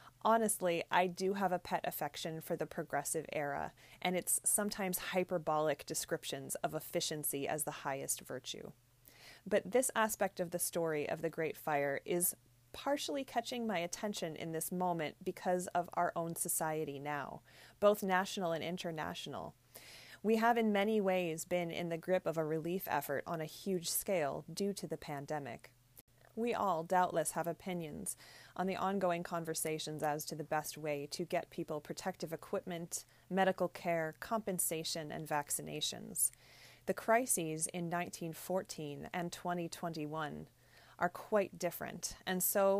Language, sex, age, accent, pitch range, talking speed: English, female, 30-49, American, 155-185 Hz, 150 wpm